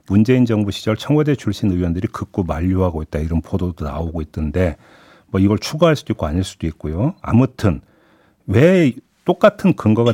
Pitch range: 90-145 Hz